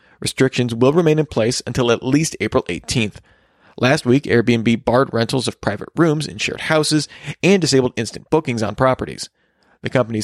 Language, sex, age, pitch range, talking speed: English, male, 40-59, 120-155 Hz, 170 wpm